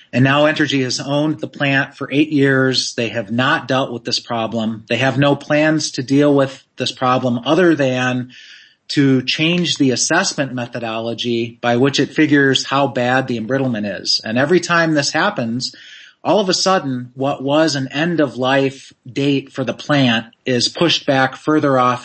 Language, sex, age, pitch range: English, male, 30-49, 125-145 Hz